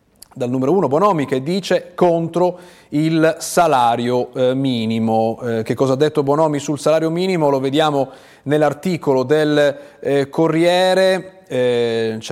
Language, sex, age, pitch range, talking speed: Italian, male, 30-49, 130-175 Hz, 135 wpm